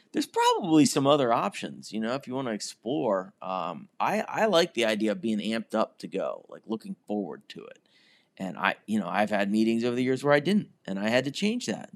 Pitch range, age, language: 115-150 Hz, 30-49, English